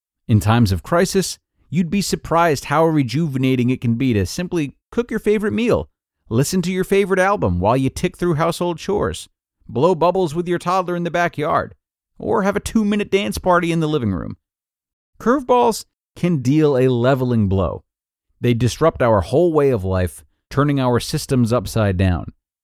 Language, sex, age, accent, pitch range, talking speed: English, male, 40-59, American, 100-155 Hz, 170 wpm